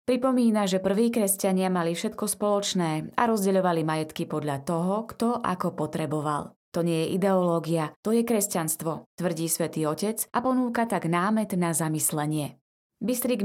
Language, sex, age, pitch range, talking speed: Slovak, female, 20-39, 165-210 Hz, 145 wpm